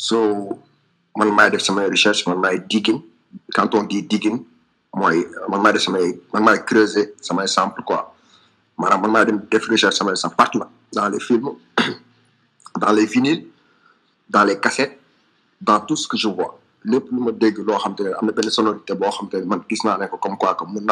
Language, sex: French, male